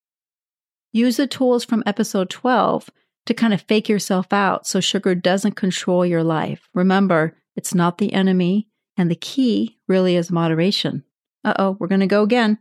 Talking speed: 170 wpm